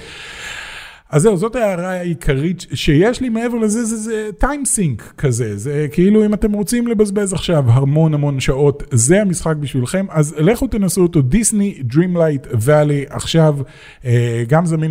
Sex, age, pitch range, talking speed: male, 30-49, 130-185 Hz, 145 wpm